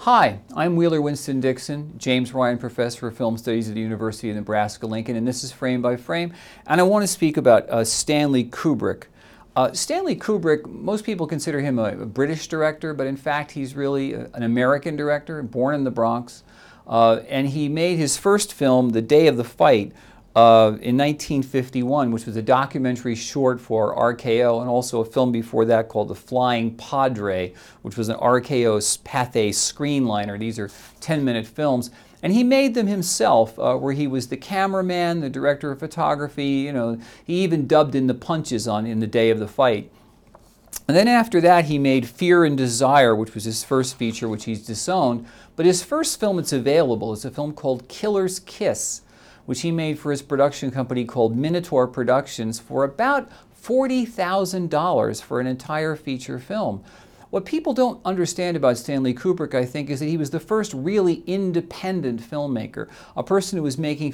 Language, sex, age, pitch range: English, male, 50-69, 120-160 Hz